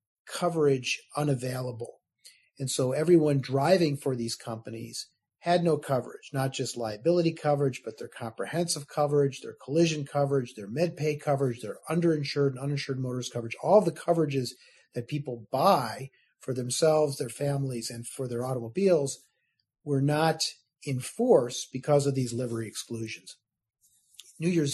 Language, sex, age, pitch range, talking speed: English, male, 40-59, 125-155 Hz, 140 wpm